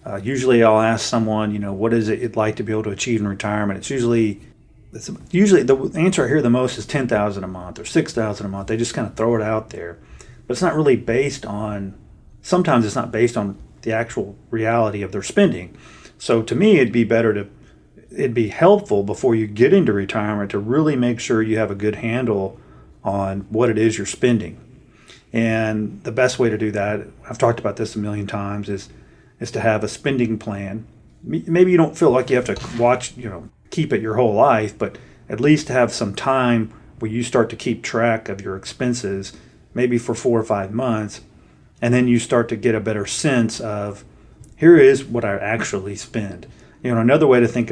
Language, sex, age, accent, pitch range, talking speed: English, male, 40-59, American, 105-125 Hz, 215 wpm